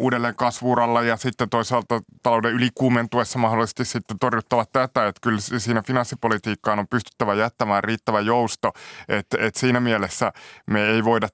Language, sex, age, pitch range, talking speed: Finnish, male, 20-39, 110-125 Hz, 145 wpm